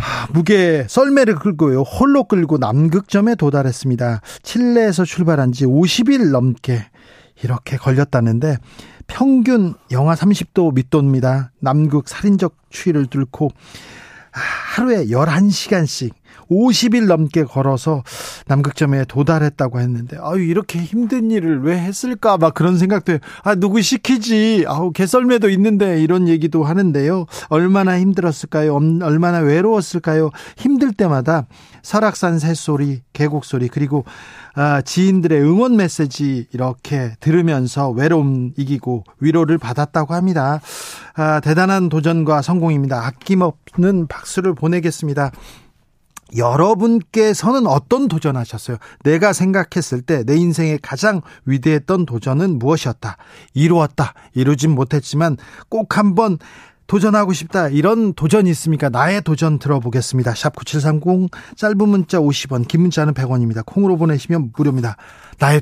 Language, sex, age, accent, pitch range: Korean, male, 40-59, native, 135-185 Hz